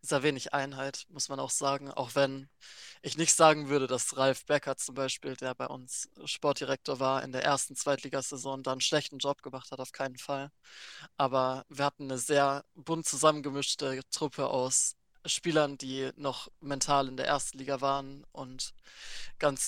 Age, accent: 20-39, German